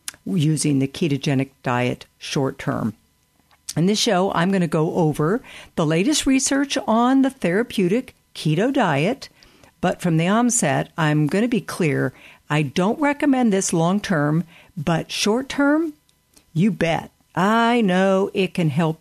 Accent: American